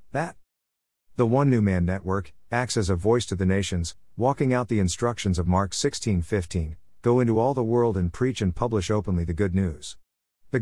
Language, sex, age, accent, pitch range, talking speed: English, male, 50-69, American, 90-115 Hz, 200 wpm